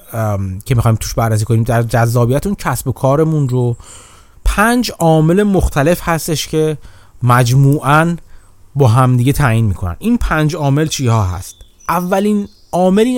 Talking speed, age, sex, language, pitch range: 130 wpm, 30-49, male, Persian, 115-165 Hz